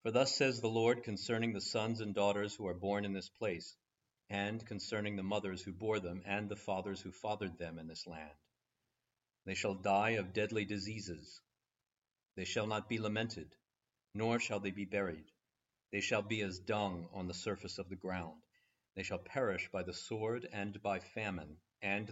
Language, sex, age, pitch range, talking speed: English, male, 50-69, 95-110 Hz, 185 wpm